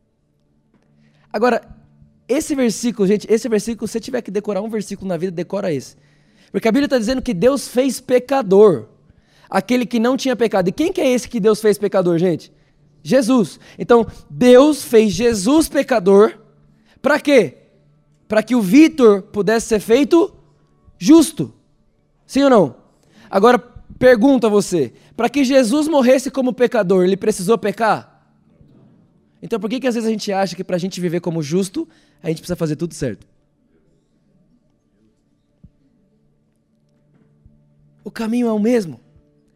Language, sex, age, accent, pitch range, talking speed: Portuguese, male, 20-39, Brazilian, 150-240 Hz, 150 wpm